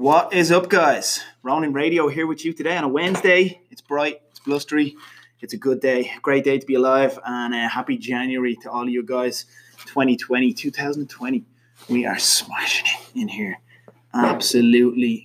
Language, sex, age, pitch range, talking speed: English, male, 20-39, 125-155 Hz, 175 wpm